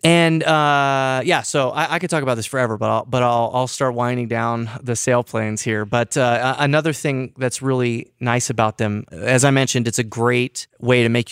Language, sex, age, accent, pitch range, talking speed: English, male, 30-49, American, 110-130 Hz, 210 wpm